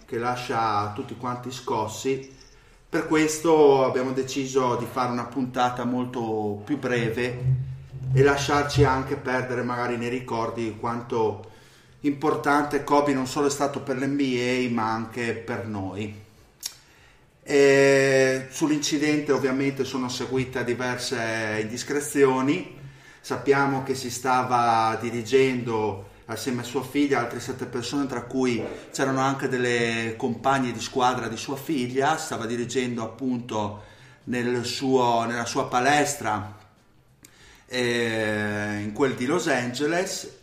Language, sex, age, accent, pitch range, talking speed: Italian, male, 30-49, native, 115-135 Hz, 120 wpm